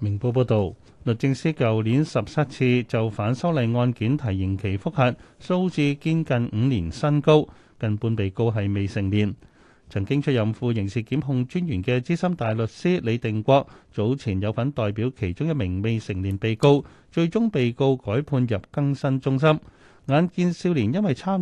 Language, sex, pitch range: Chinese, male, 105-140 Hz